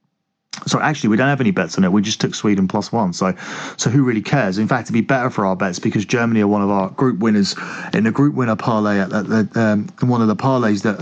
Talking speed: 260 wpm